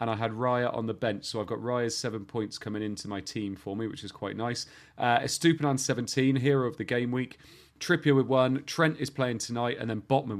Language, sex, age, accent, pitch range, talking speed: English, male, 30-49, British, 110-140 Hz, 235 wpm